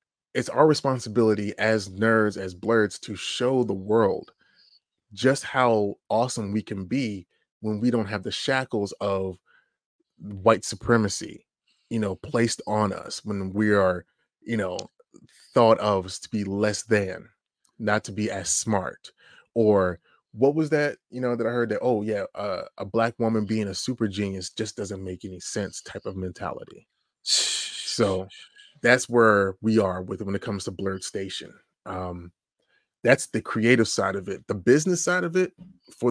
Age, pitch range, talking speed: 30-49, 100-120 Hz, 165 wpm